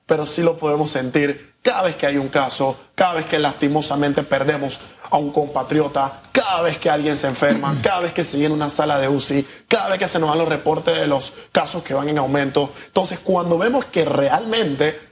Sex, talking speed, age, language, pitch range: male, 215 wpm, 20-39, Spanish, 150-215 Hz